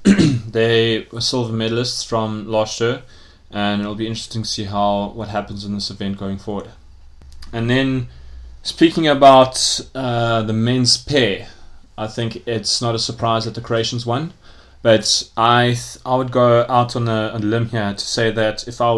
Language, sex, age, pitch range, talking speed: English, male, 20-39, 105-115 Hz, 180 wpm